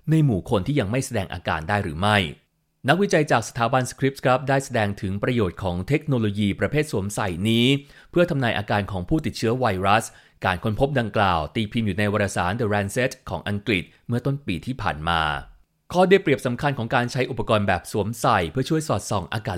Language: Thai